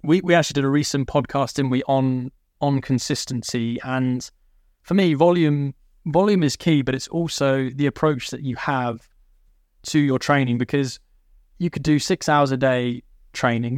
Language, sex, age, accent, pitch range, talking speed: English, male, 20-39, British, 125-145 Hz, 170 wpm